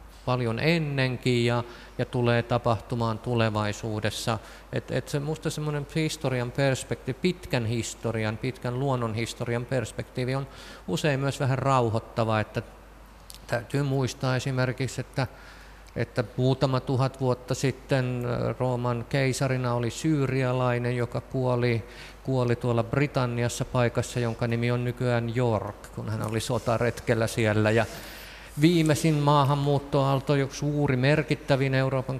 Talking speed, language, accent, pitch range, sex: 110 wpm, Finnish, native, 115-135 Hz, male